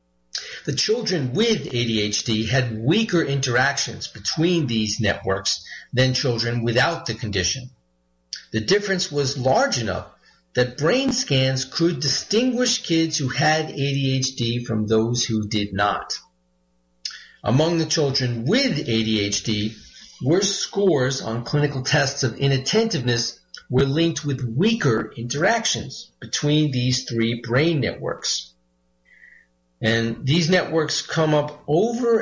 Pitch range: 110-155 Hz